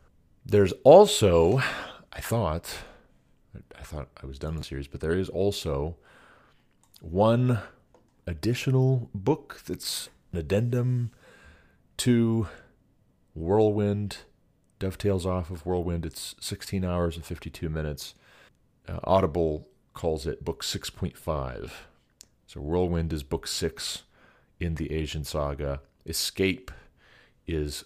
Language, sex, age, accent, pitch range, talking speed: English, male, 40-59, American, 75-95 Hz, 110 wpm